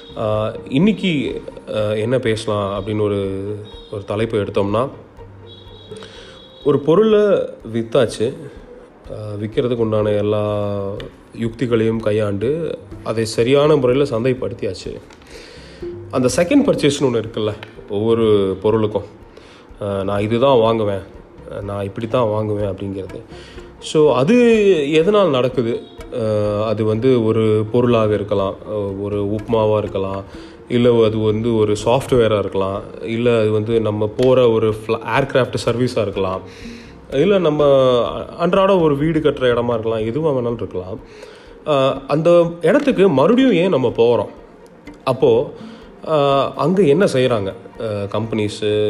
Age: 30-49